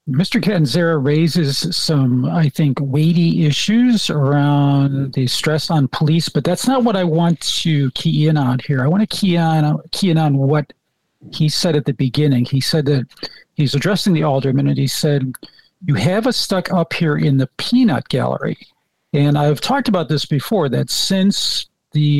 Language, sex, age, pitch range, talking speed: English, male, 50-69, 140-170 Hz, 180 wpm